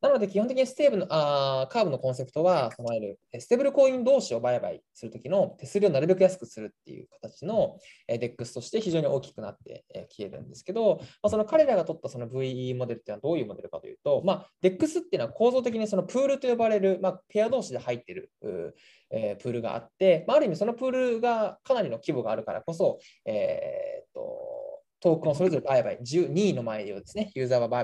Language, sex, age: Japanese, male, 20-39